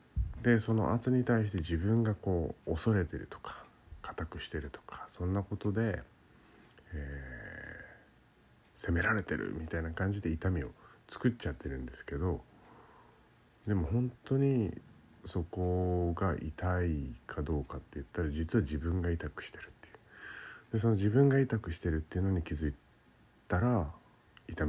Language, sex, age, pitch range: Japanese, male, 50-69, 80-115 Hz